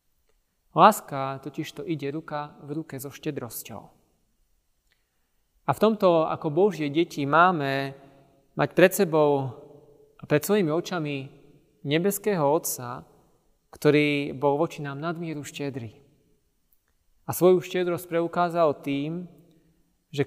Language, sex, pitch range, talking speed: Slovak, male, 135-170 Hz, 110 wpm